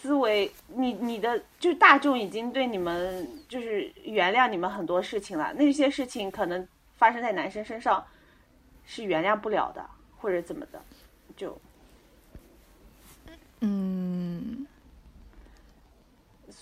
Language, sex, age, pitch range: Chinese, female, 30-49, 190-270 Hz